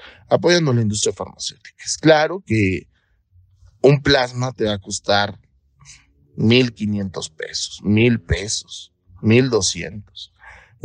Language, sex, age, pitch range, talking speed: Spanish, male, 40-59, 100-140 Hz, 105 wpm